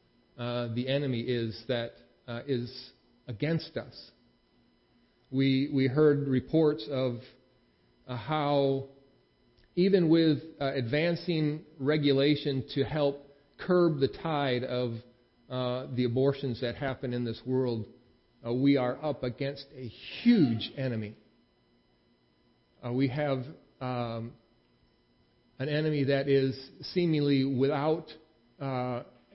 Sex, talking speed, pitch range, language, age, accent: male, 110 wpm, 115-145 Hz, English, 40-59, American